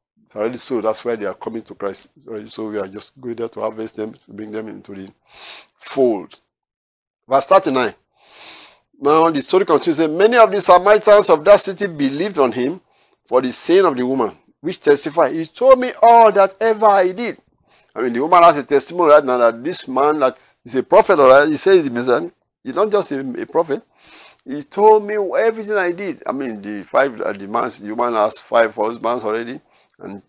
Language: English